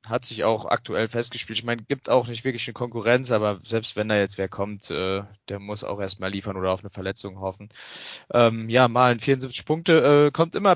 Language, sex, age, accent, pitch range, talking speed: German, male, 20-39, German, 115-145 Hz, 225 wpm